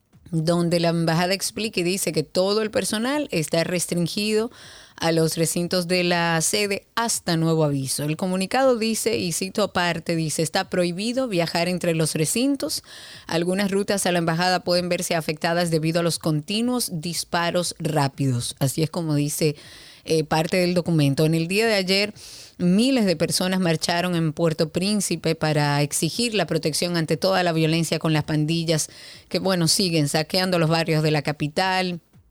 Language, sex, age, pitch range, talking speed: Spanish, female, 30-49, 160-195 Hz, 165 wpm